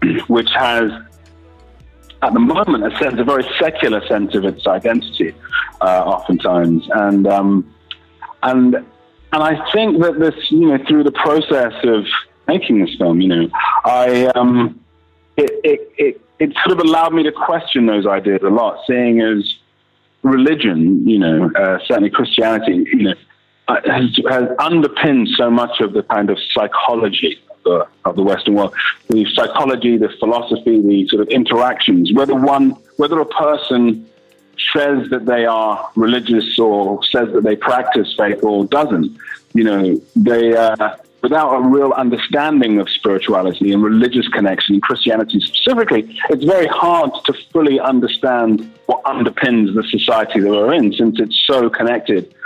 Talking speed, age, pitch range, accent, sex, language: 150 wpm, 40-59, 105-150 Hz, British, male, English